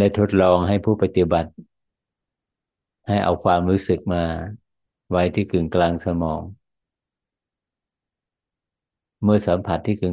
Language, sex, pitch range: Thai, male, 90-100 Hz